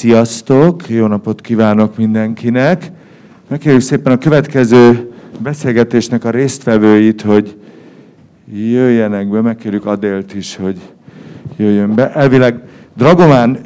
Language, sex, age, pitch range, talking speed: Hungarian, male, 50-69, 110-145 Hz, 100 wpm